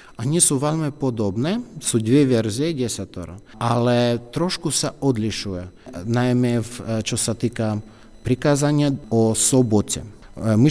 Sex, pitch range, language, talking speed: male, 105-135 Hz, Slovak, 110 wpm